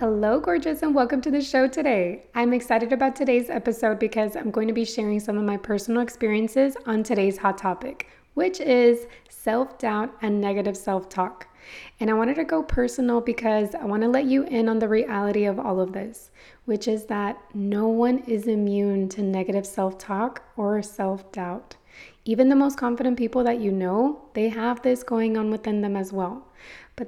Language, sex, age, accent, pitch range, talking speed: English, female, 20-39, American, 205-245 Hz, 185 wpm